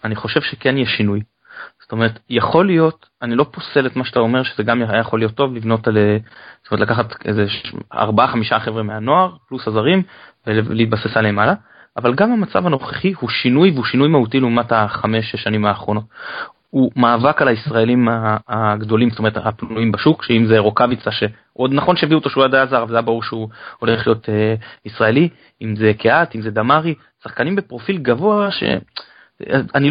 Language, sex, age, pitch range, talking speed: Hebrew, male, 20-39, 110-155 Hz, 165 wpm